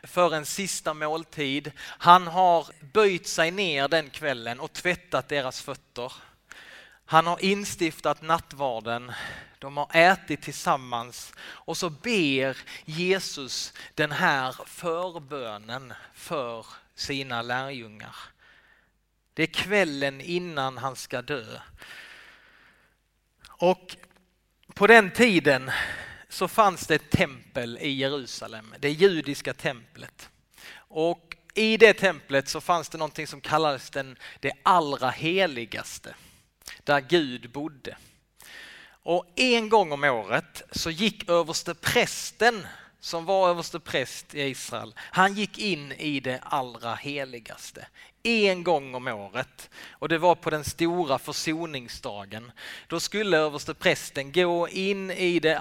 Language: Swedish